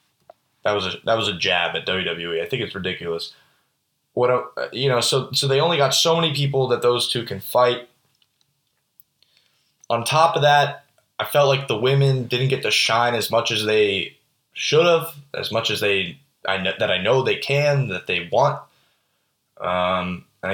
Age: 20-39